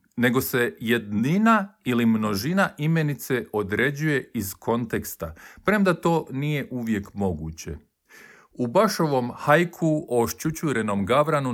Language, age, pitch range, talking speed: Croatian, 50-69, 110-165 Hz, 105 wpm